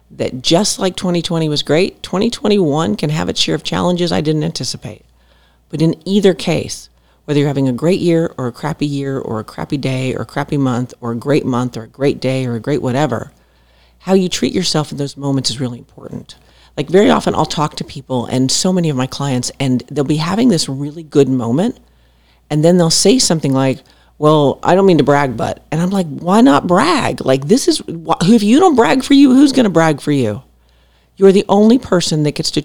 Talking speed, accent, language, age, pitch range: 225 wpm, American, English, 40-59, 130-180 Hz